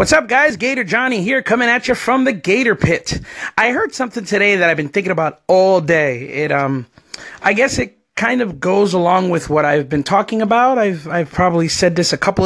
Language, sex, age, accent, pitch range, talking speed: English, male, 30-49, American, 155-215 Hz, 220 wpm